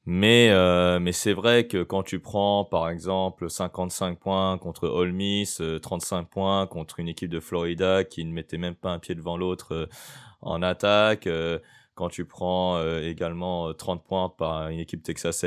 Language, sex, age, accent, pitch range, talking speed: French, male, 20-39, French, 85-100 Hz, 180 wpm